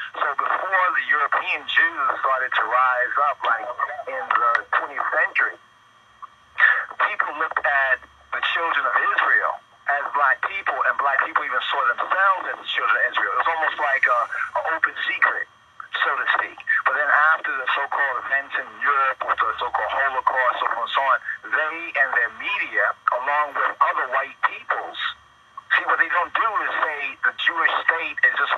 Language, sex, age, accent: English, male, 50-69, American